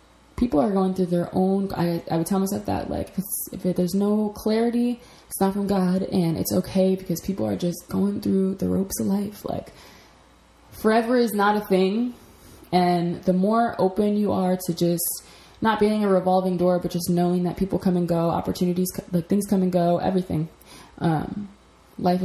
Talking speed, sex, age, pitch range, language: 190 wpm, female, 20-39, 170-195 Hz, English